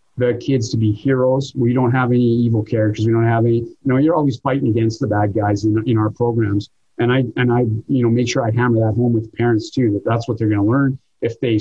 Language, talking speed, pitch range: English, 275 wpm, 115-145 Hz